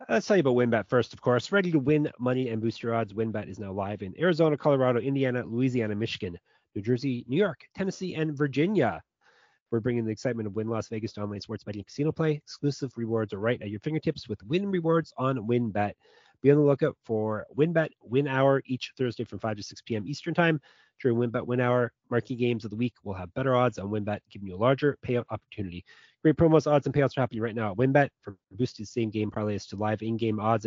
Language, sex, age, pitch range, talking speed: English, male, 30-49, 110-140 Hz, 225 wpm